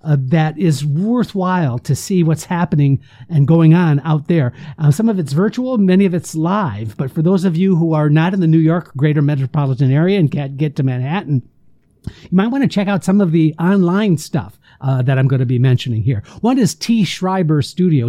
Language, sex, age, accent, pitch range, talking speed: English, male, 60-79, American, 140-185 Hz, 220 wpm